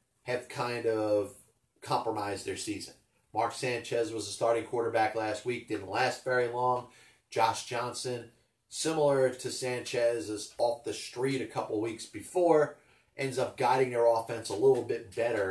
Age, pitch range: 30-49, 110-130 Hz